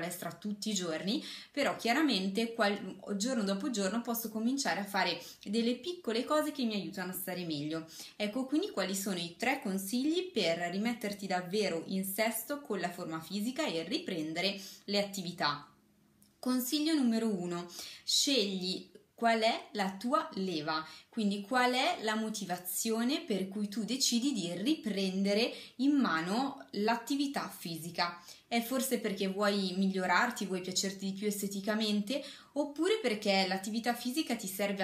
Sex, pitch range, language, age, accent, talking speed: female, 180-235 Hz, Italian, 20-39, native, 140 wpm